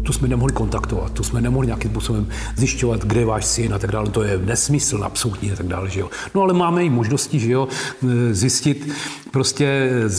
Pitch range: 110-135 Hz